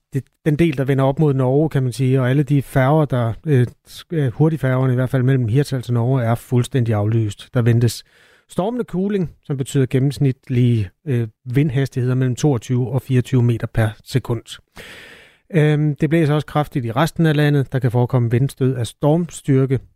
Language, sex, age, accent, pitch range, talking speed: Danish, male, 30-49, native, 125-150 Hz, 175 wpm